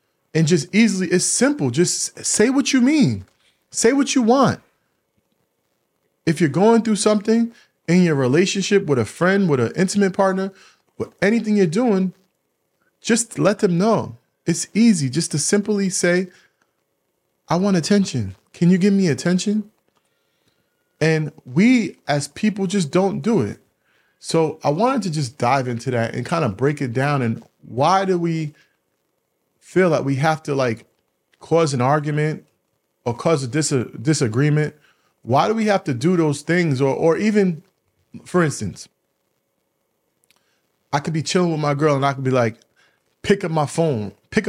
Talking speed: 165 wpm